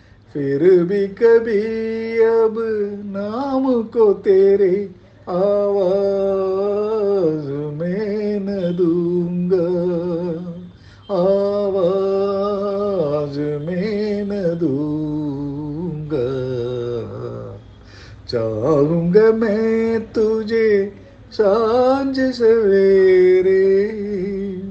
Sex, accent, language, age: male, native, Tamil, 50-69